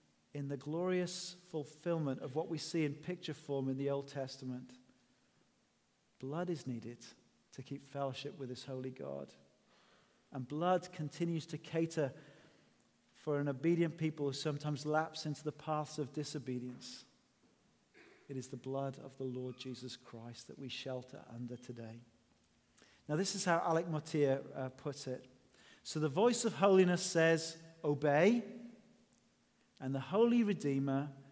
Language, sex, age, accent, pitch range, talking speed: English, male, 40-59, British, 135-180 Hz, 145 wpm